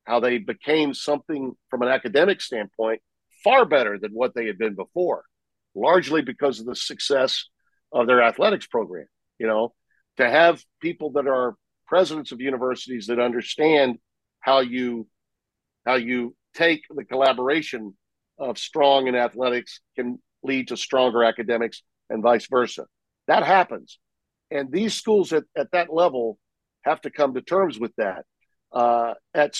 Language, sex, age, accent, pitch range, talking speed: English, male, 50-69, American, 120-160 Hz, 150 wpm